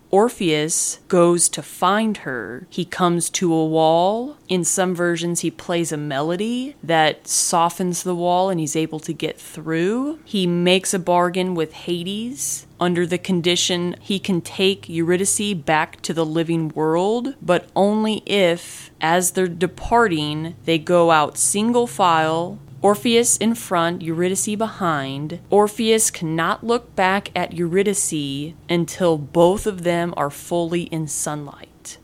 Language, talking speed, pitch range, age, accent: English, 140 wpm, 160-190 Hz, 20-39, American